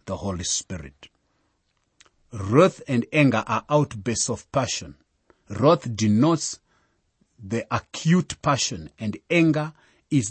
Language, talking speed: English, 105 wpm